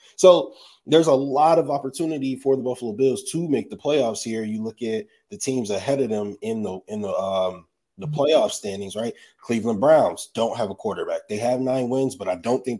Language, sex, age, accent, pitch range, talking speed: English, male, 20-39, American, 110-150 Hz, 215 wpm